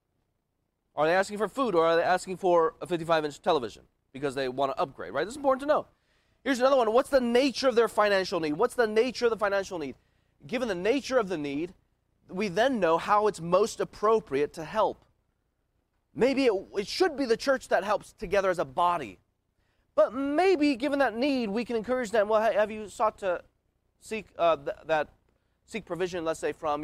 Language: English